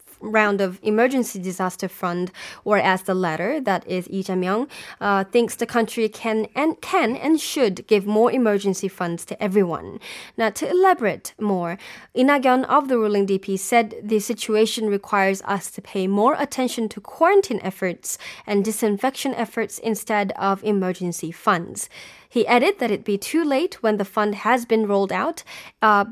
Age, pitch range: 10-29, 195-235 Hz